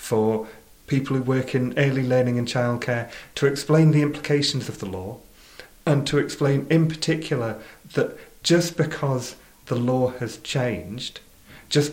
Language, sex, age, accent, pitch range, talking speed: English, male, 30-49, British, 115-140 Hz, 145 wpm